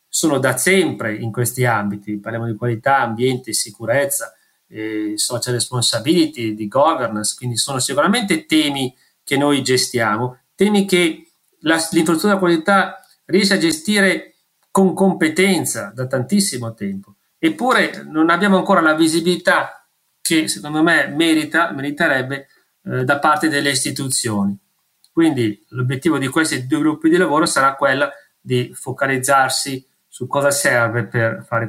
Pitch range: 120-165 Hz